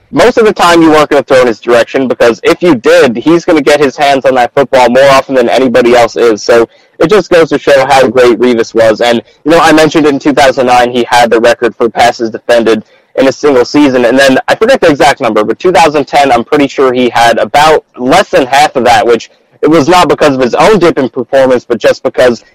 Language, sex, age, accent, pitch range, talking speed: English, male, 20-39, American, 120-160 Hz, 245 wpm